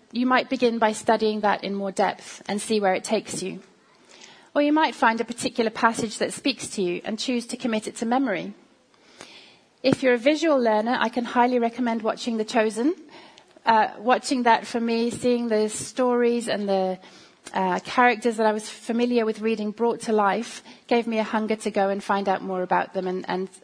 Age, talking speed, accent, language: 30-49, 205 wpm, British, English